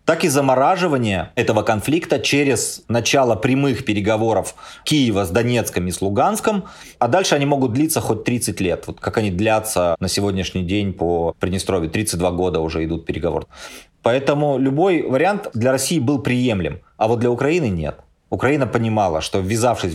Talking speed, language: 160 wpm, Russian